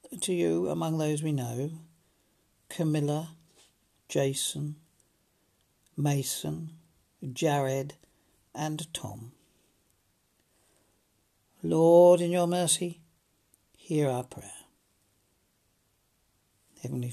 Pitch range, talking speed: 130-160 Hz, 70 wpm